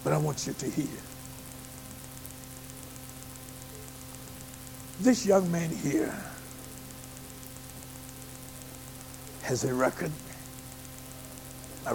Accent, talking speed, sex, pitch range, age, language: American, 70 wpm, male, 130-200 Hz, 60-79, English